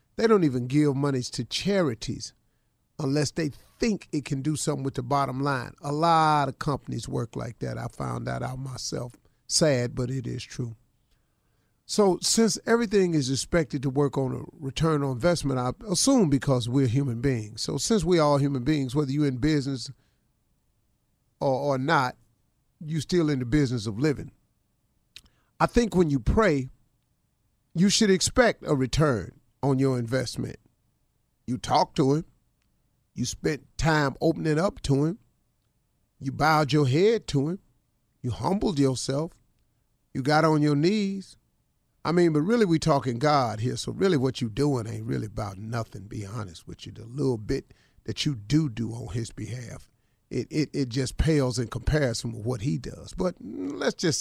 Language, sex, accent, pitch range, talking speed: English, male, American, 125-155 Hz, 175 wpm